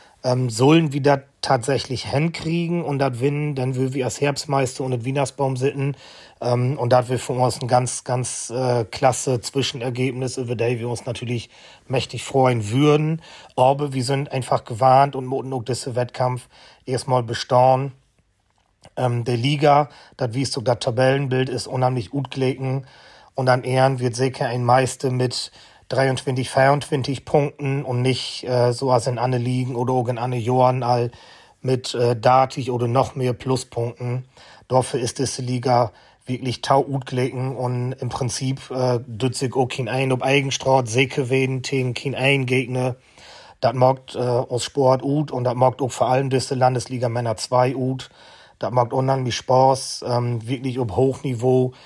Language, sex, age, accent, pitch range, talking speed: German, male, 40-59, German, 125-135 Hz, 160 wpm